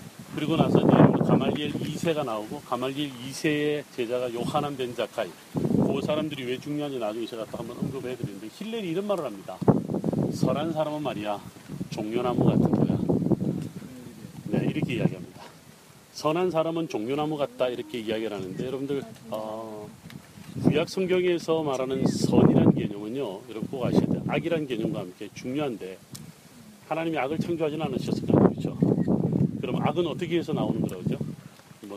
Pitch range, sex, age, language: 125-170 Hz, male, 40-59, Korean